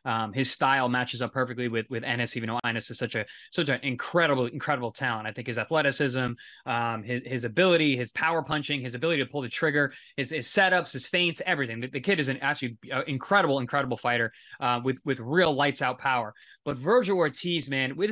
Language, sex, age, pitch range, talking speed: English, male, 20-39, 130-165 Hz, 215 wpm